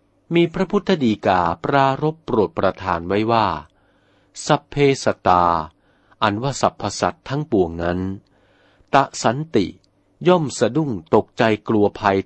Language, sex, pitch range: Thai, male, 95-130 Hz